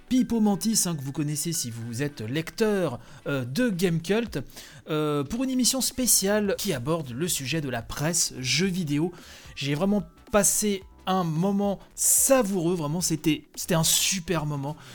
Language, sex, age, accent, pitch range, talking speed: French, male, 30-49, French, 150-200 Hz, 155 wpm